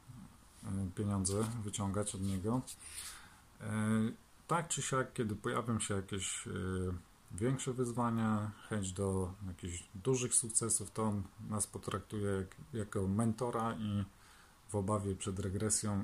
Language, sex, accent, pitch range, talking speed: Polish, male, native, 95-115 Hz, 110 wpm